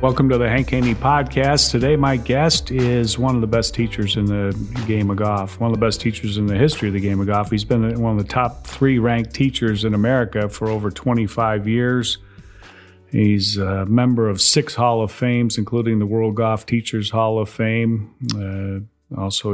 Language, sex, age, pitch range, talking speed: English, male, 40-59, 105-120 Hz, 205 wpm